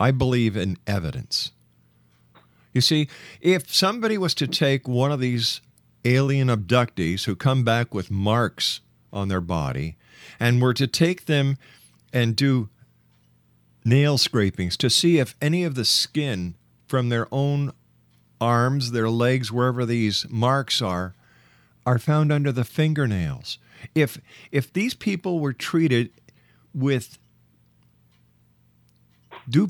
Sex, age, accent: male, 50-69, American